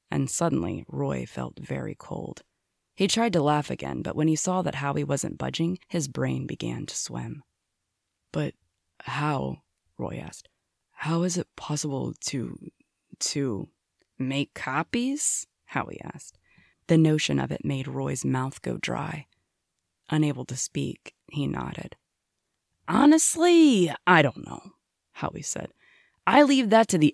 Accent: American